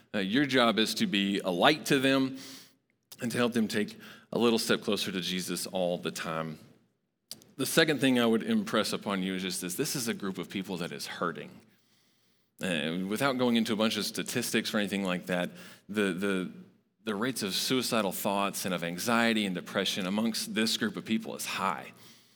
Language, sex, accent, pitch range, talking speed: English, male, American, 100-135 Hz, 200 wpm